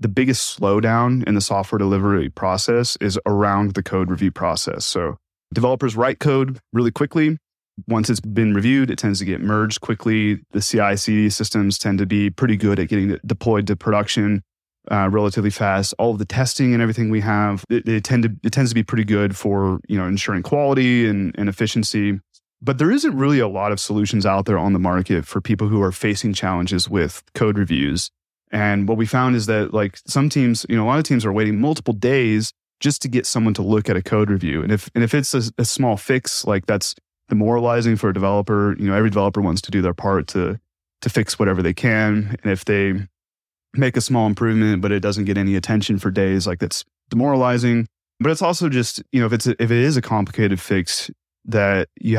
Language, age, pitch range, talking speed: English, 30-49, 100-115 Hz, 215 wpm